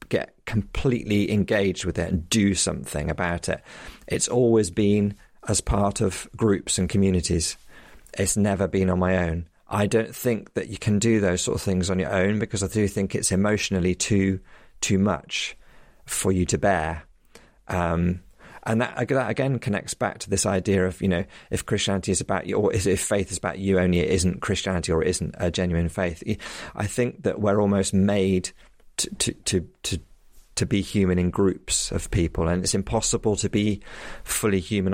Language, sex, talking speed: English, male, 190 wpm